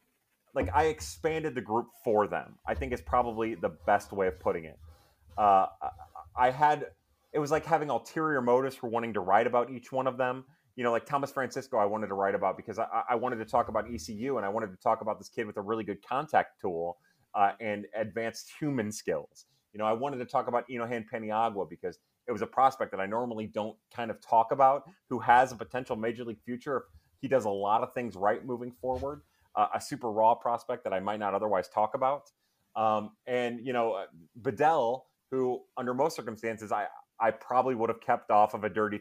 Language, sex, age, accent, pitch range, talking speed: English, male, 30-49, American, 105-125 Hz, 220 wpm